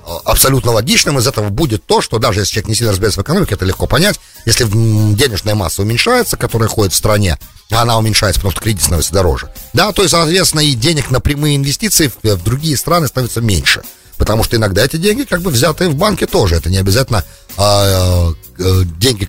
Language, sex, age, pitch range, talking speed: English, male, 40-59, 100-145 Hz, 195 wpm